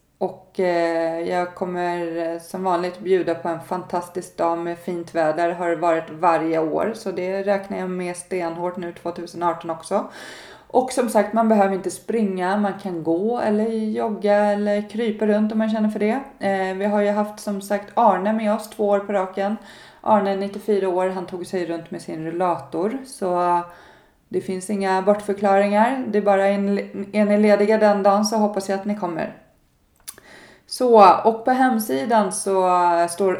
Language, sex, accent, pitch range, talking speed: Swedish, female, native, 170-205 Hz, 170 wpm